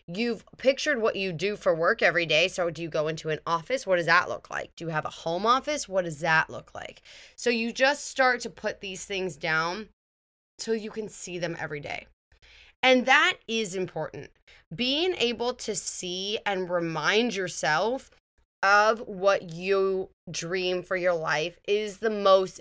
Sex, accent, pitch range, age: female, American, 165-215 Hz, 10-29